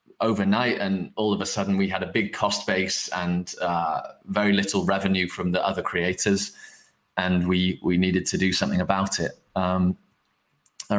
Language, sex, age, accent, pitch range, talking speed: English, male, 20-39, British, 90-105 Hz, 175 wpm